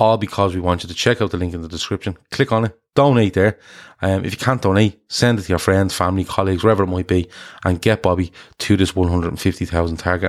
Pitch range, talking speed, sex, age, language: 90-105 Hz, 240 wpm, male, 30-49, English